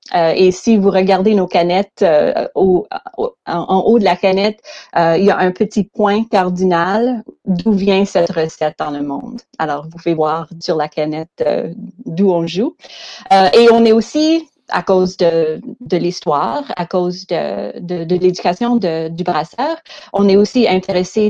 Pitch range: 175-215 Hz